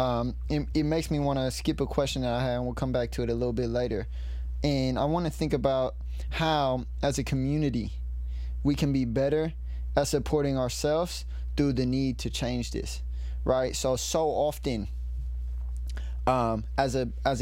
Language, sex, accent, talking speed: English, male, American, 185 wpm